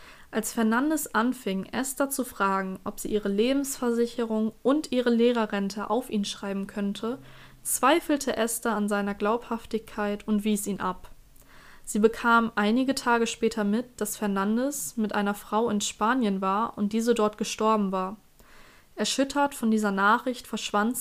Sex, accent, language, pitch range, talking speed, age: female, German, German, 205-240 Hz, 145 wpm, 20-39